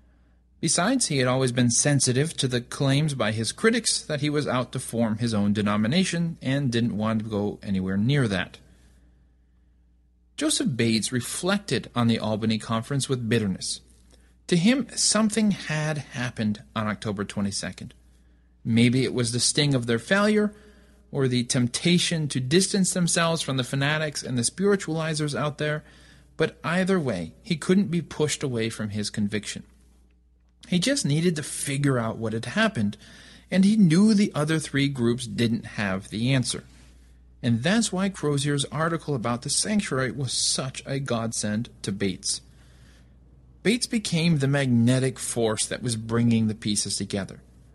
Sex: male